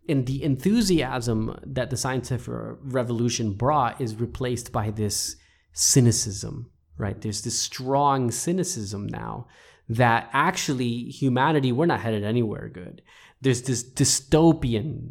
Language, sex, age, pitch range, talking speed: English, male, 20-39, 110-135 Hz, 120 wpm